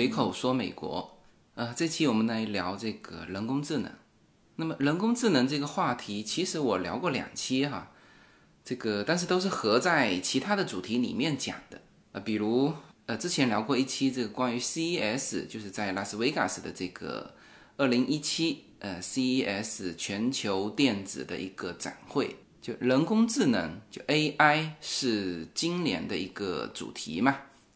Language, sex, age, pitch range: Chinese, male, 20-39, 110-165 Hz